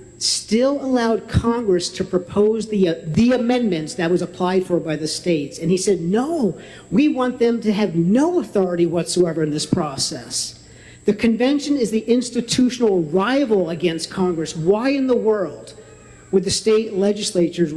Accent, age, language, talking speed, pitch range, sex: American, 50-69, English, 160 wpm, 160-205 Hz, male